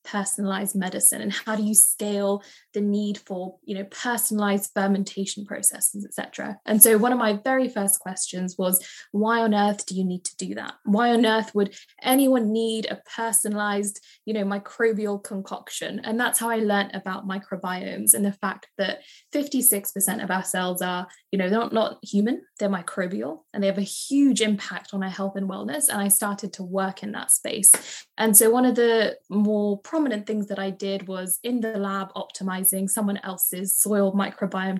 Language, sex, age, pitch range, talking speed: English, female, 10-29, 195-220 Hz, 190 wpm